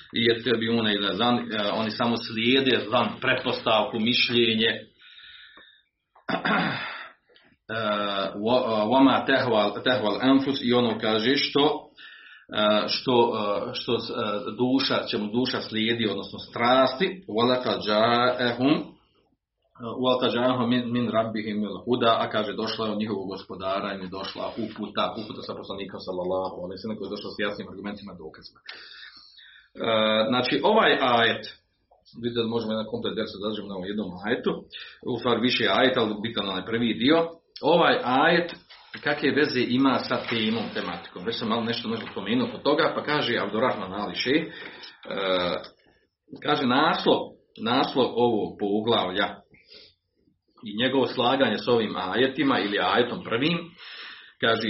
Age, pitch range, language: 40-59, 105-125 Hz, Croatian